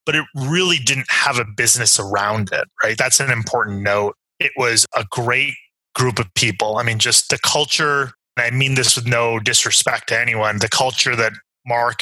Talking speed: 195 wpm